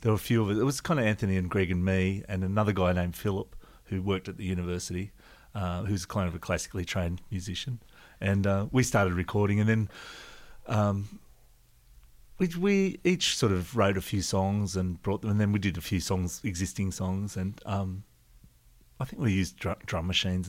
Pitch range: 95-115 Hz